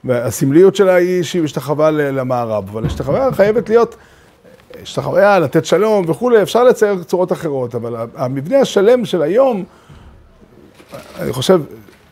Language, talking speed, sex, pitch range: Hebrew, 125 wpm, male, 130-205 Hz